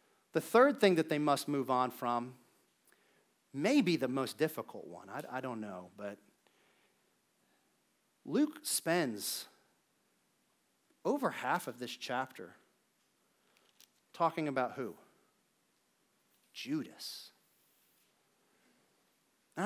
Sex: male